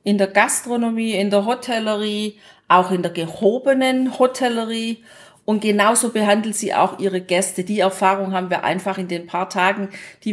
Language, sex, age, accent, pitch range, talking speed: German, female, 40-59, German, 200-255 Hz, 165 wpm